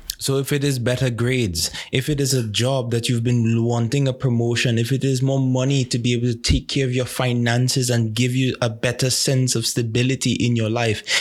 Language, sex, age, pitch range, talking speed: English, male, 20-39, 115-145 Hz, 225 wpm